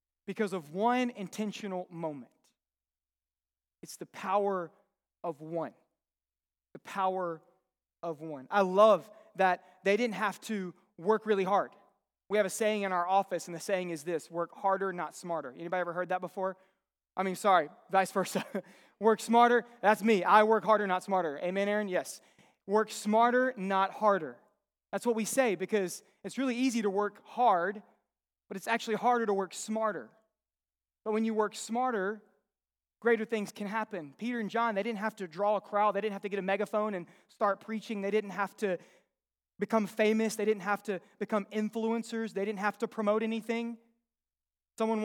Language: English